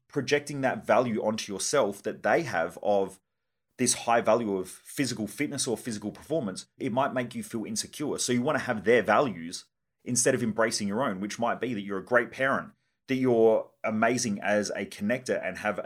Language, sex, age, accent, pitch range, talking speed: English, male, 30-49, Australian, 100-120 Hz, 195 wpm